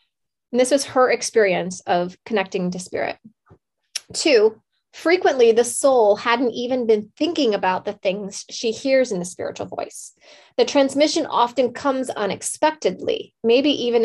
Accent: American